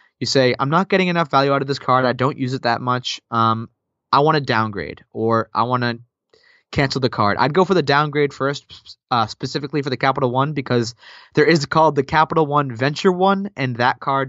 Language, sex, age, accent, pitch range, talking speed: English, male, 20-39, American, 125-155 Hz, 225 wpm